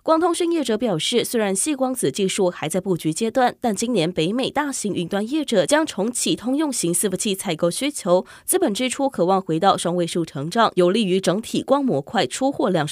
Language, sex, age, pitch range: Chinese, female, 20-39, 185-260 Hz